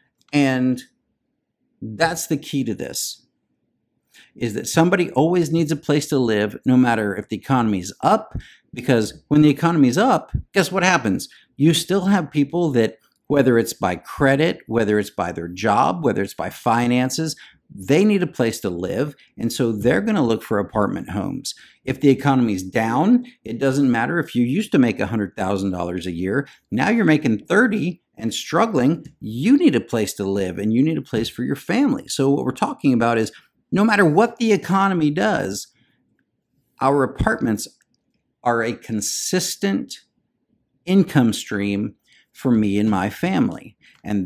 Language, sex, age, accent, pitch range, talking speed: English, male, 50-69, American, 115-165 Hz, 165 wpm